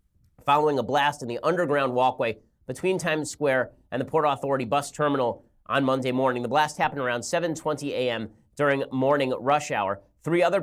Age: 30-49